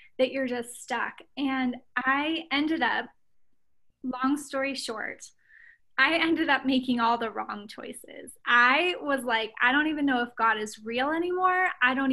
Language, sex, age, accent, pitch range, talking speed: English, female, 20-39, American, 245-290 Hz, 165 wpm